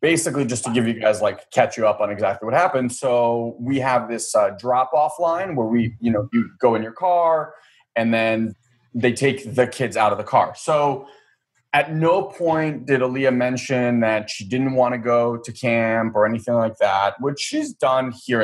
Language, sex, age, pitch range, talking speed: English, male, 20-39, 115-145 Hz, 210 wpm